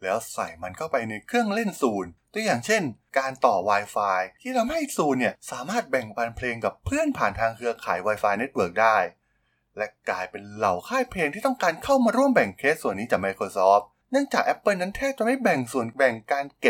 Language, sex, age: Thai, male, 20-39